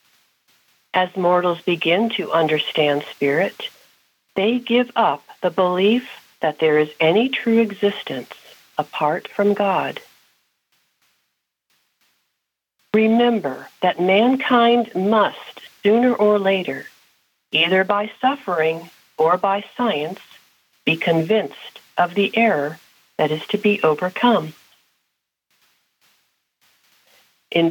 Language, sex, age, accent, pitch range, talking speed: English, female, 50-69, American, 160-215 Hz, 95 wpm